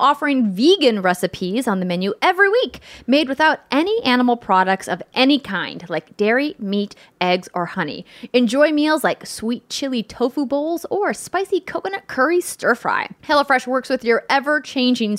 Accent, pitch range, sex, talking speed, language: American, 215-310 Hz, female, 155 wpm, English